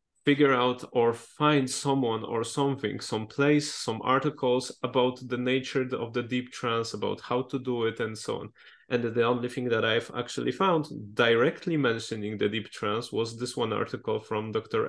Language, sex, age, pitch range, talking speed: English, male, 20-39, 120-145 Hz, 180 wpm